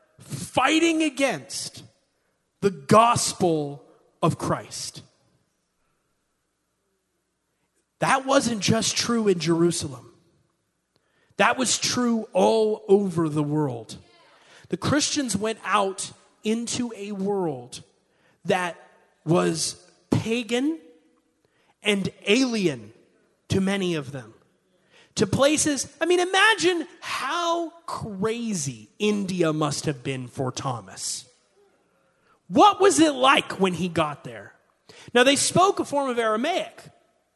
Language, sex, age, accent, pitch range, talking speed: English, male, 30-49, American, 180-300 Hz, 100 wpm